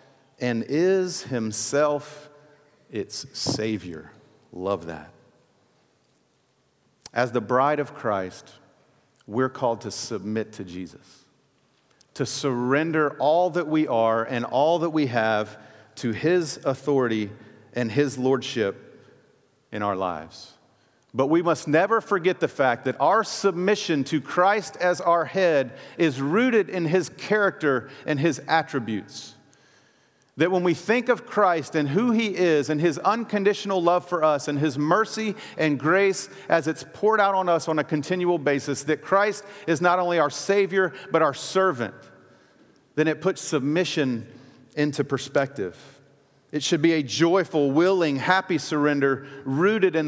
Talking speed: 140 wpm